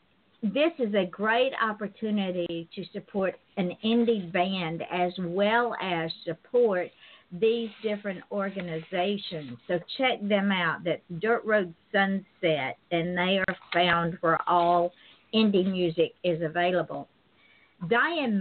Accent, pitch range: American, 175-220 Hz